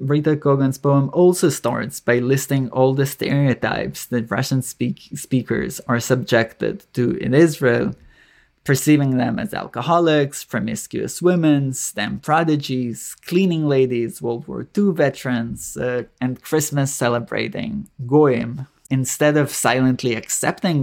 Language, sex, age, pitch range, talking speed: English, male, 20-39, 125-150 Hz, 120 wpm